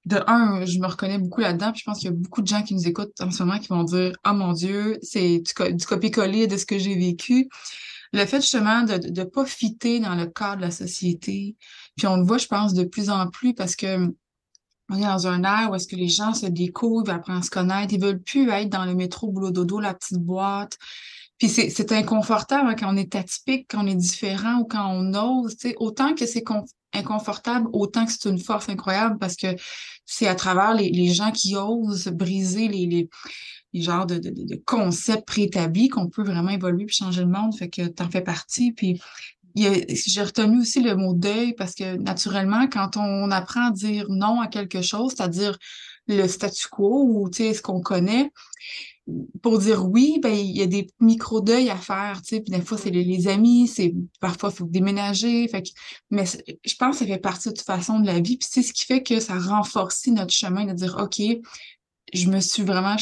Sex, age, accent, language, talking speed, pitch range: female, 20-39, Canadian, French, 230 wpm, 185-220 Hz